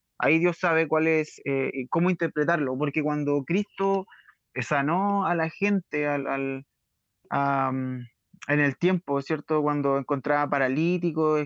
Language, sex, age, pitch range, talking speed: Spanish, male, 20-39, 140-175 Hz, 130 wpm